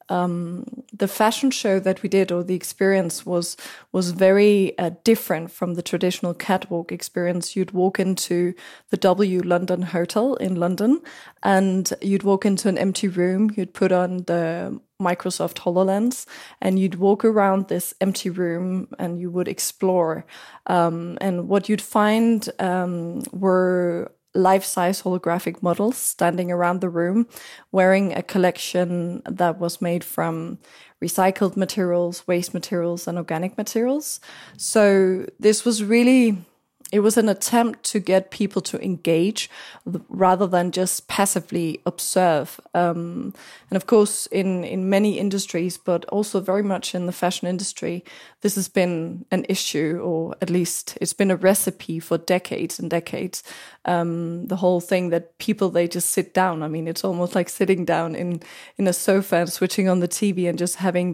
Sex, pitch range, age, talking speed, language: female, 175-195 Hz, 20-39, 160 wpm, English